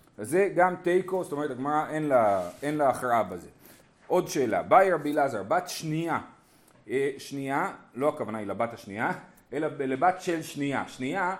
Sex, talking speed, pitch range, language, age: male, 145 wpm, 135-190 Hz, Hebrew, 30-49